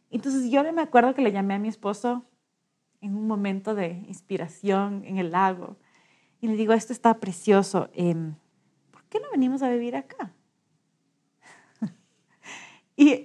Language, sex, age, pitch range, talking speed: Spanish, female, 30-49, 195-255 Hz, 150 wpm